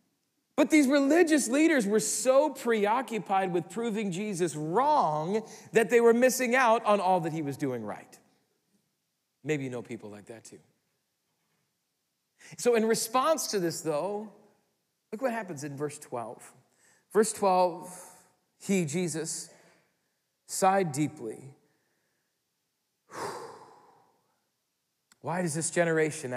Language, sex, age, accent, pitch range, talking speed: English, male, 40-59, American, 130-195 Hz, 120 wpm